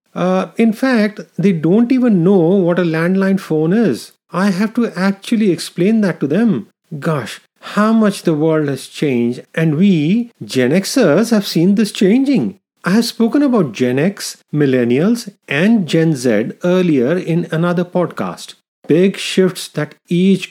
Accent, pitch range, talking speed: Indian, 150-205 Hz, 155 wpm